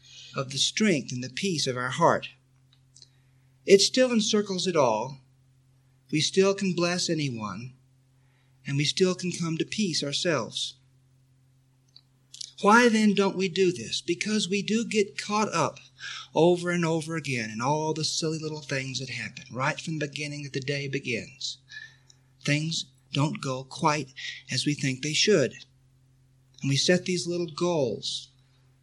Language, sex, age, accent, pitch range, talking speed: English, male, 50-69, American, 130-185 Hz, 155 wpm